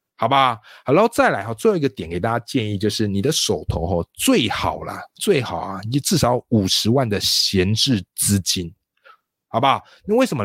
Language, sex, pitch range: Chinese, male, 100-155 Hz